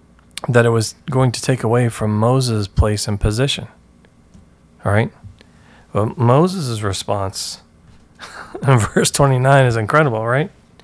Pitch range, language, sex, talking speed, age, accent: 100-125 Hz, English, male, 125 wpm, 40-59, American